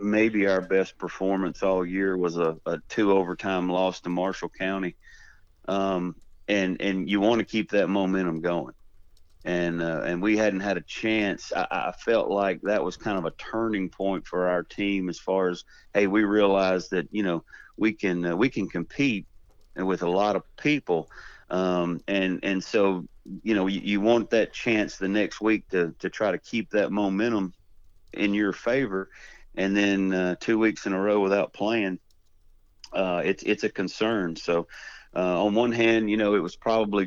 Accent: American